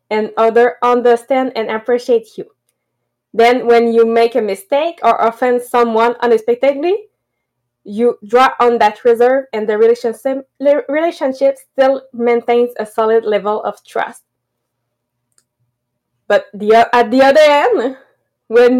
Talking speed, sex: 120 wpm, female